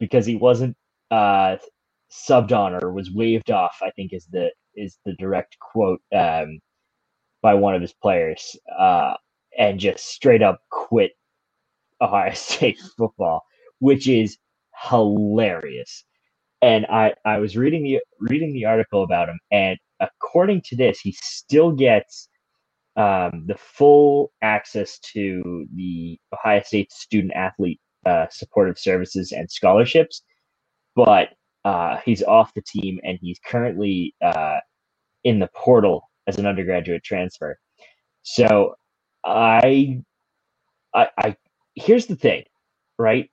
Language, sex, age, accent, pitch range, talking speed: English, male, 20-39, American, 95-135 Hz, 130 wpm